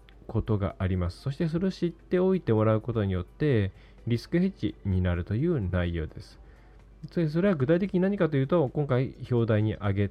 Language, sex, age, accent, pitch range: Japanese, male, 20-39, native, 95-145 Hz